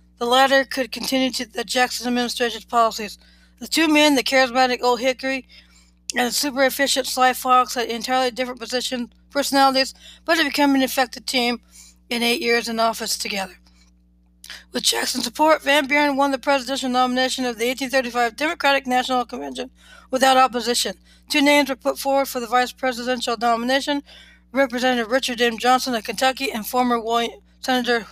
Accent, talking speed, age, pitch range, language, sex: American, 155 wpm, 60-79, 230-265 Hz, English, female